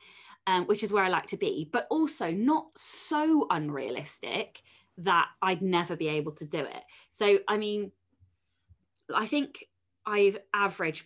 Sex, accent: female, British